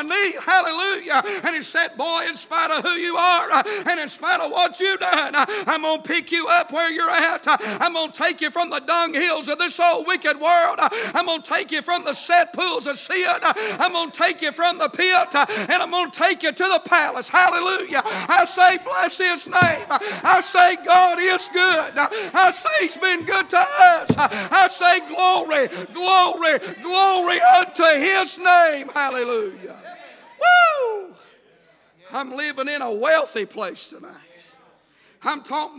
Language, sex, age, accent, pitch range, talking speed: English, male, 50-69, American, 290-355 Hz, 175 wpm